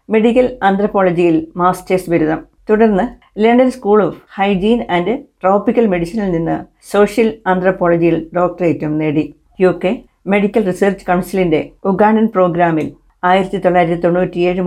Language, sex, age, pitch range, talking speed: Malayalam, female, 60-79, 170-210 Hz, 110 wpm